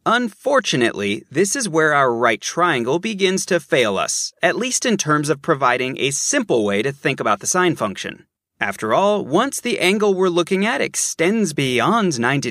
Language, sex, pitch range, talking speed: English, male, 140-200 Hz, 175 wpm